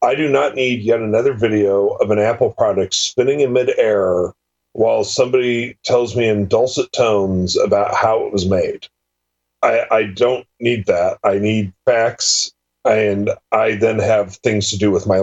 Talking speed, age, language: 170 wpm, 40-59, English